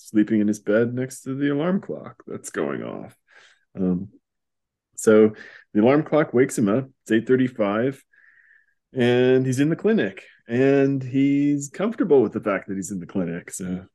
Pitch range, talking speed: 95-135 Hz, 170 wpm